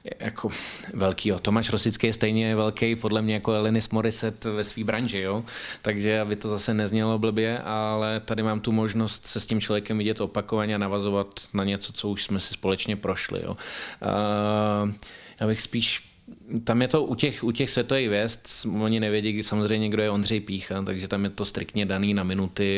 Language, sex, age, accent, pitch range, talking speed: Czech, male, 20-39, native, 95-110 Hz, 190 wpm